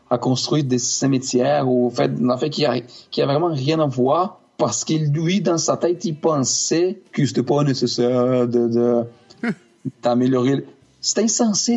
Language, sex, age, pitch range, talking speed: English, male, 40-59, 120-150 Hz, 170 wpm